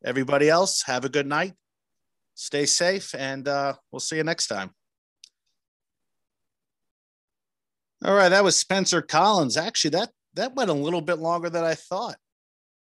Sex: male